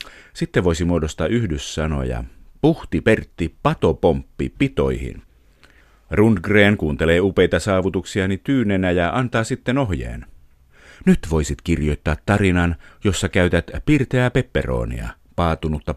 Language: Finnish